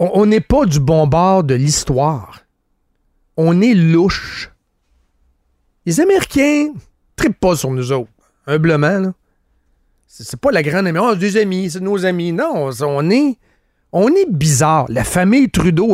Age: 40-59